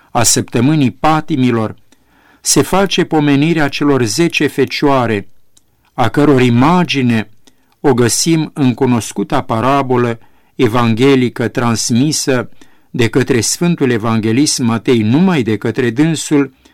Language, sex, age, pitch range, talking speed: Romanian, male, 50-69, 115-140 Hz, 100 wpm